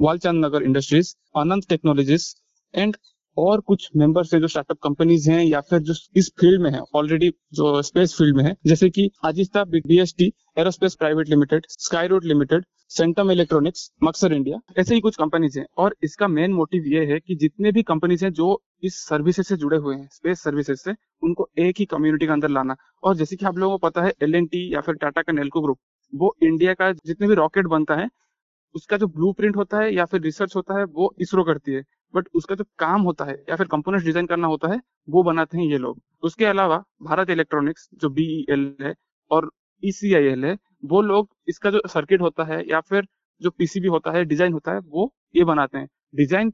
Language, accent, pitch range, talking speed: Hindi, native, 155-190 Hz, 205 wpm